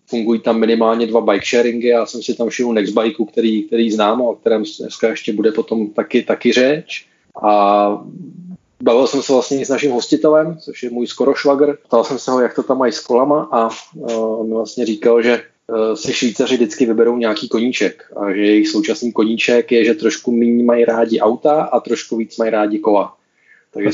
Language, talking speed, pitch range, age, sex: Czech, 200 wpm, 105-120 Hz, 20-39, male